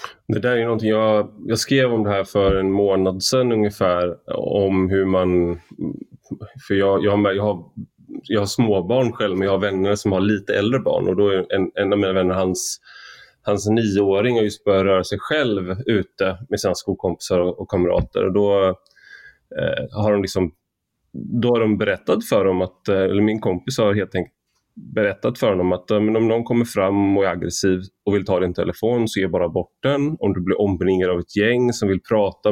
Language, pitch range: Swedish, 95-115 Hz